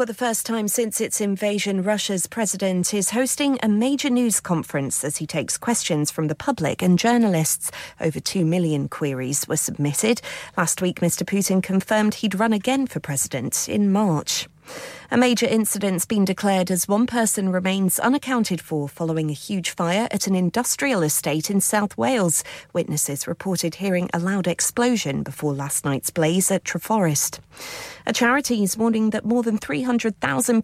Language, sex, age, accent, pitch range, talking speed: English, female, 40-59, British, 170-235 Hz, 165 wpm